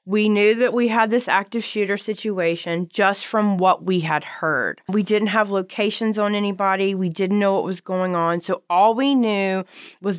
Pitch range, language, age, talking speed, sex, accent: 170-205 Hz, English, 20-39, 195 wpm, female, American